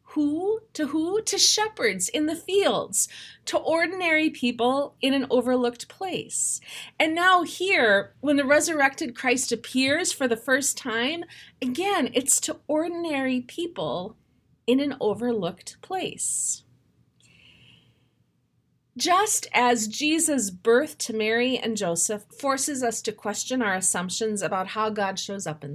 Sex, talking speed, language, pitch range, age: female, 130 wpm, English, 215-300 Hz, 30-49